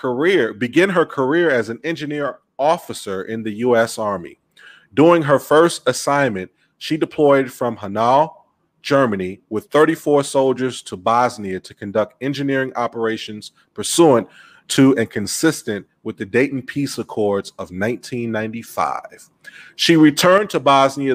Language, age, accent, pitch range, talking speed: English, 30-49, American, 115-145 Hz, 130 wpm